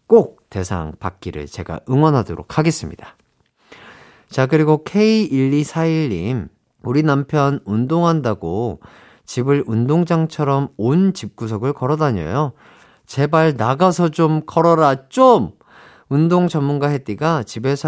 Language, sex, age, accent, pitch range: Korean, male, 40-59, native, 110-165 Hz